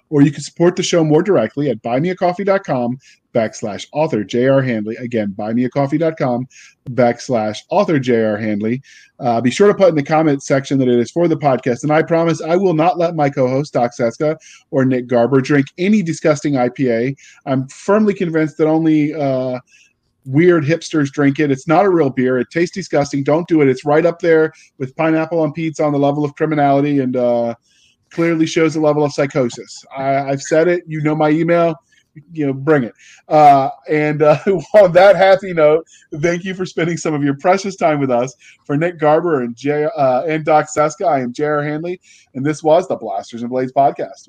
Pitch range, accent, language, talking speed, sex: 130-160 Hz, American, English, 200 wpm, male